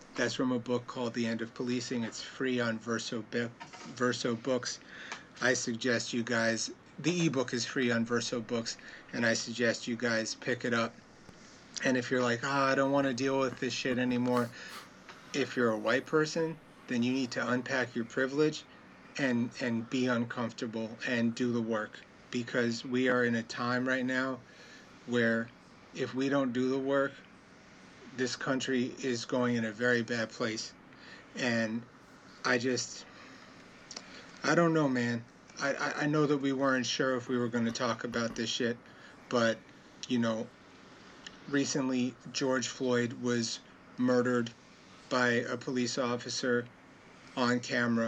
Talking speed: 165 wpm